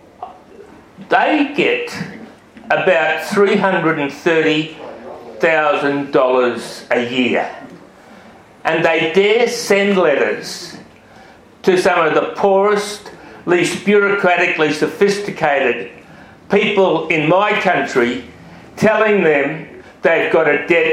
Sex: male